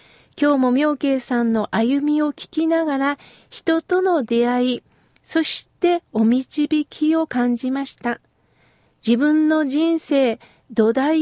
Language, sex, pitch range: Japanese, female, 240-325 Hz